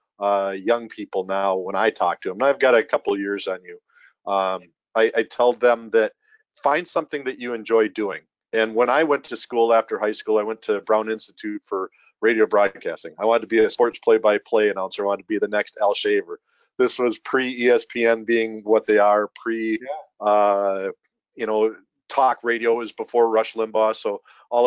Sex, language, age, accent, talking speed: male, English, 40-59, American, 205 wpm